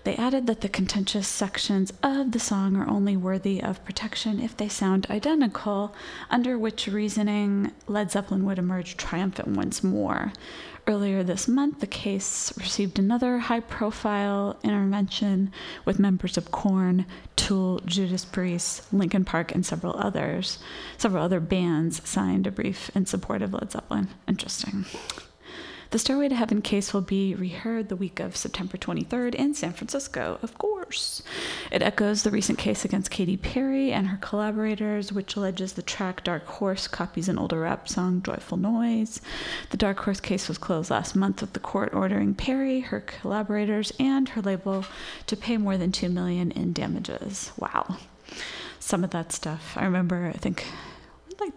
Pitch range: 185-215 Hz